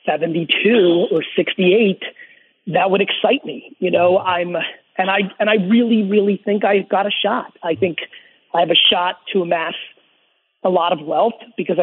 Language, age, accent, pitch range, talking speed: English, 30-49, American, 185-225 Hz, 170 wpm